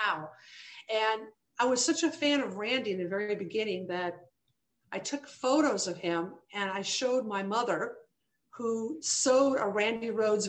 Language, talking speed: English, 160 wpm